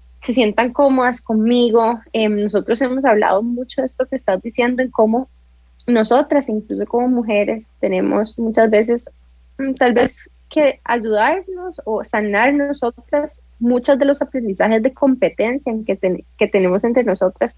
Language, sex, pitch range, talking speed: English, female, 195-250 Hz, 145 wpm